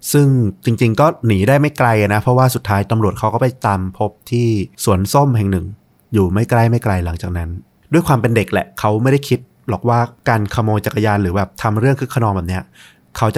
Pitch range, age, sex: 100-120 Hz, 30-49, male